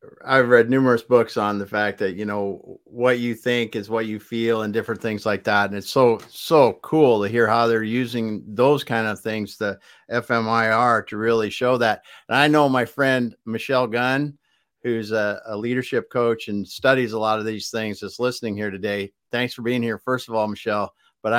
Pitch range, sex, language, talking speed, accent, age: 110-130 Hz, male, English, 210 wpm, American, 50-69